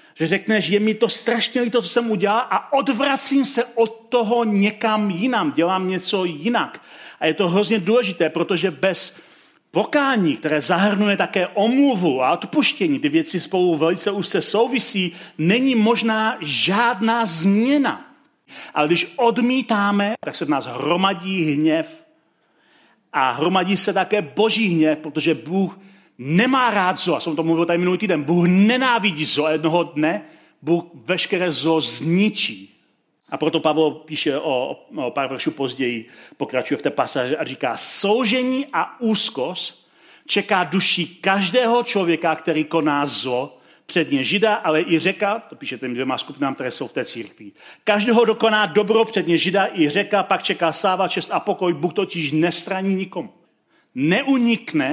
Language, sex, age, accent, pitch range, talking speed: Czech, male, 40-59, native, 165-225 Hz, 150 wpm